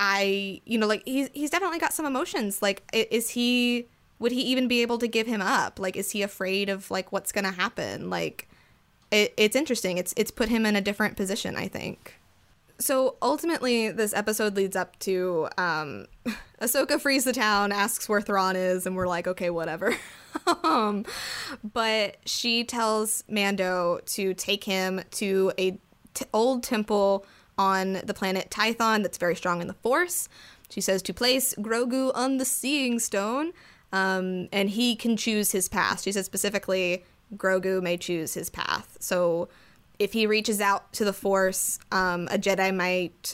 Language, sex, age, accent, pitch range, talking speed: English, female, 10-29, American, 190-235 Hz, 170 wpm